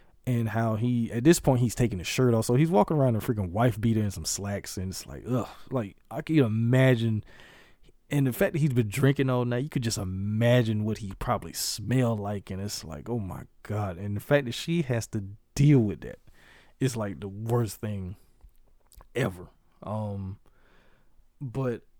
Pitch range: 105-135 Hz